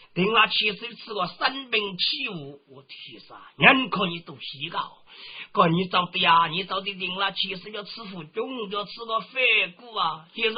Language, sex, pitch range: Chinese, male, 165-235 Hz